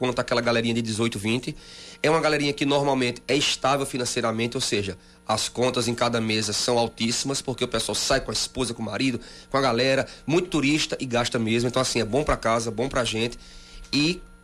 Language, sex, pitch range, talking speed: Portuguese, male, 115-150 Hz, 210 wpm